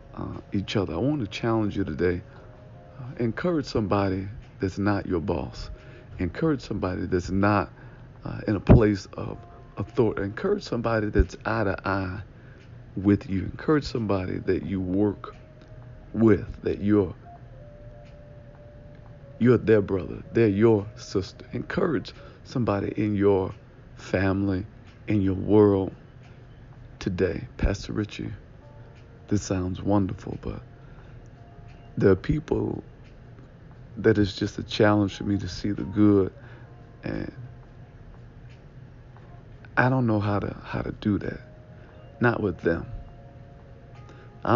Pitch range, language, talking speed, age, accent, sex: 100-125 Hz, English, 120 wpm, 50-69, American, male